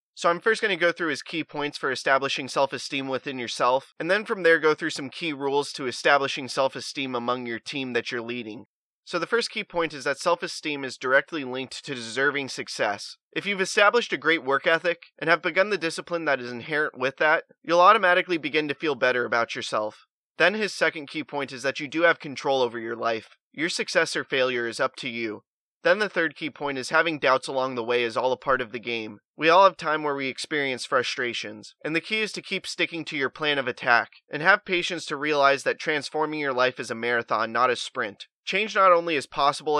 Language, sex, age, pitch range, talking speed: English, male, 20-39, 130-165 Hz, 230 wpm